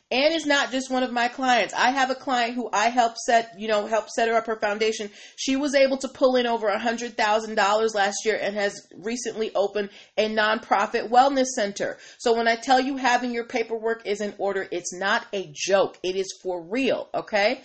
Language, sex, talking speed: English, female, 220 wpm